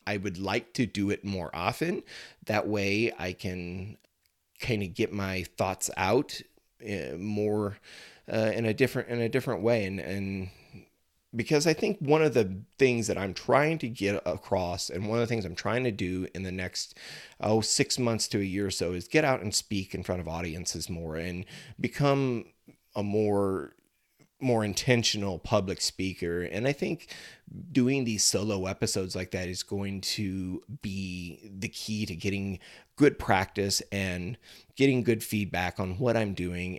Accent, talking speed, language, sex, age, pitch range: American, 175 wpm, English, male, 30-49, 95-115 Hz